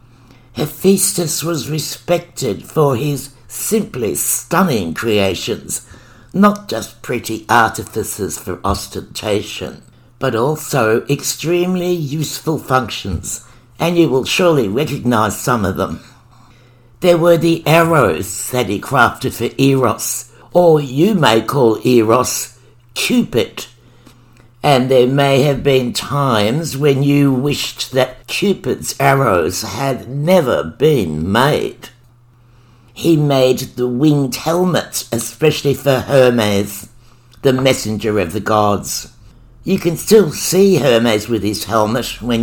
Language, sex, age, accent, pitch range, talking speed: English, male, 60-79, British, 115-145 Hz, 115 wpm